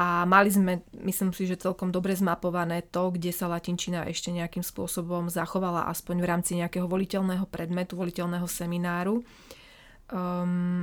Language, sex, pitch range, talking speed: Slovak, female, 175-185 Hz, 145 wpm